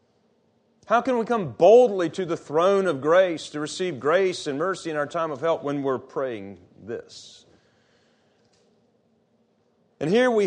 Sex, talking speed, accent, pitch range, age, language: male, 155 wpm, American, 145-200 Hz, 40-59, English